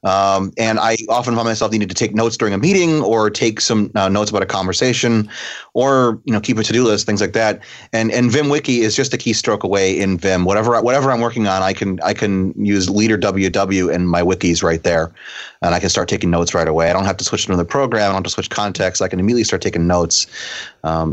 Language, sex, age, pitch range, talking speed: English, male, 30-49, 95-120 Hz, 250 wpm